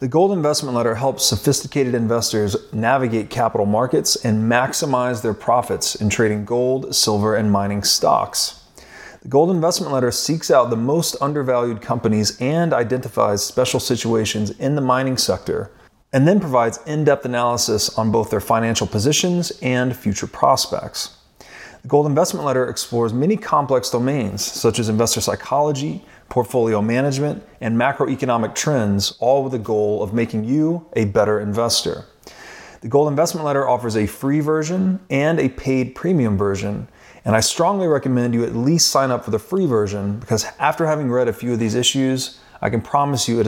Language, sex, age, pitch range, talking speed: English, male, 30-49, 110-140 Hz, 165 wpm